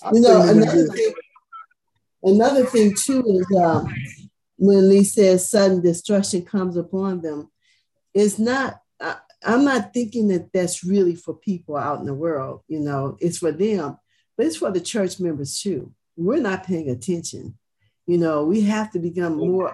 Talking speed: 160 wpm